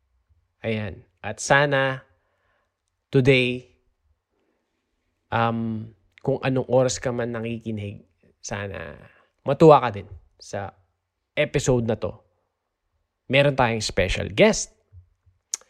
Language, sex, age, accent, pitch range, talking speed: Filipino, male, 20-39, native, 95-135 Hz, 90 wpm